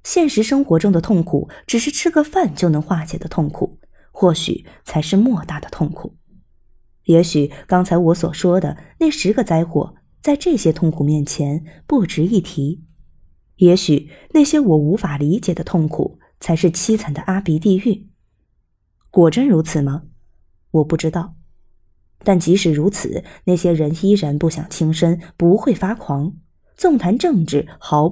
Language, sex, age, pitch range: Chinese, female, 20-39, 155-205 Hz